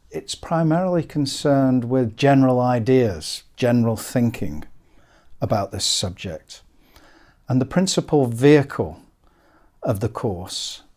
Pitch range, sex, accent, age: 105-130 Hz, male, British, 50-69